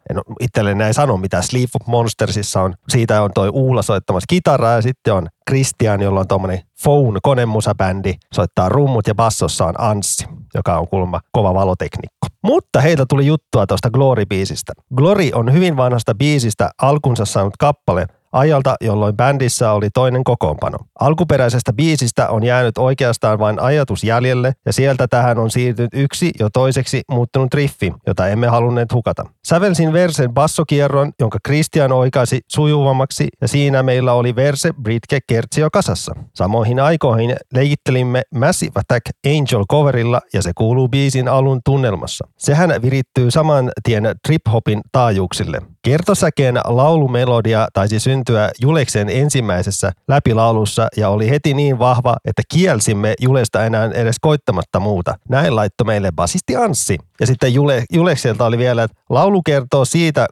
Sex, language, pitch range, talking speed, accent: male, Finnish, 110-140 Hz, 140 wpm, native